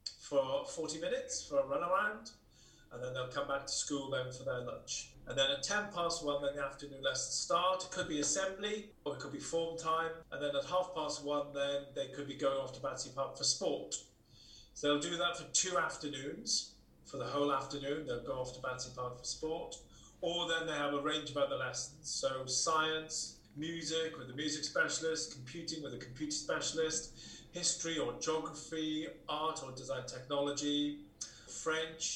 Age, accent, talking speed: 30-49, British, 195 wpm